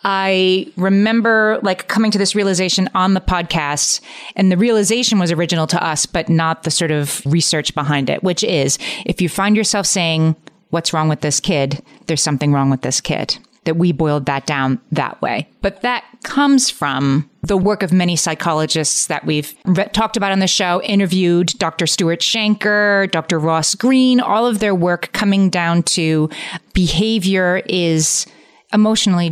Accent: American